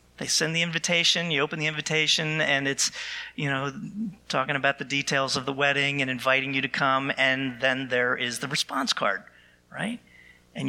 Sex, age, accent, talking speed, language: male, 40-59, American, 185 wpm, English